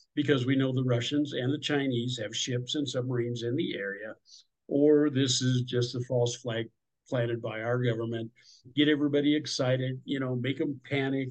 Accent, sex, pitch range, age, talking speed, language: American, male, 120-145 Hz, 50-69, 180 wpm, English